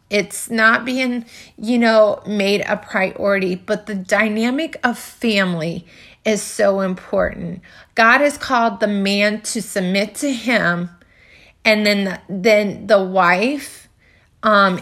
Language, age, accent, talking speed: English, 30-49, American, 130 wpm